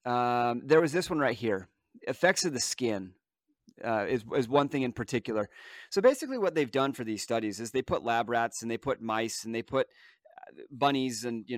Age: 30-49